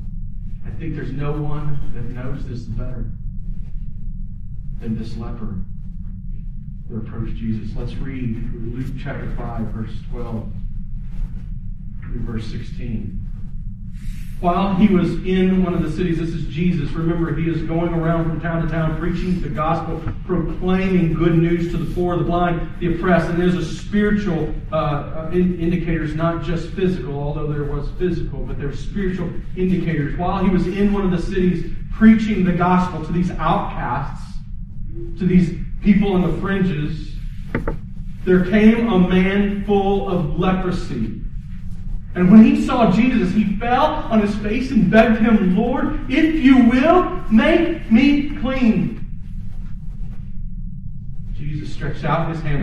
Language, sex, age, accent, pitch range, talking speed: English, male, 40-59, American, 130-185 Hz, 145 wpm